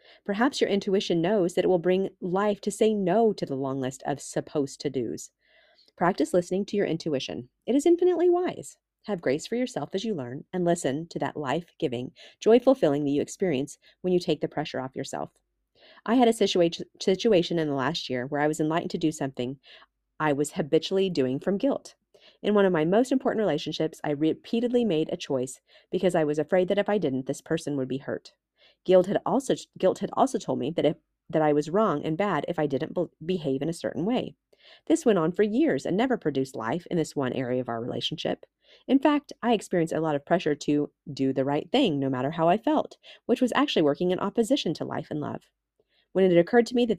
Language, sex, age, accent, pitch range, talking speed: English, female, 40-59, American, 145-205 Hz, 225 wpm